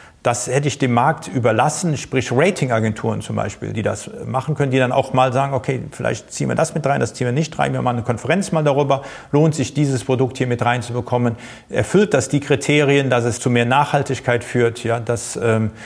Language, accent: German, German